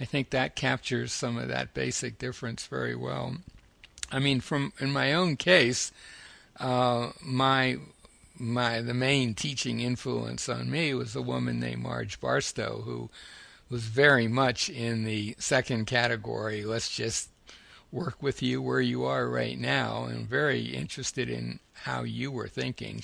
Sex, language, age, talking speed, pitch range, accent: male, English, 60-79, 155 wpm, 110-135 Hz, American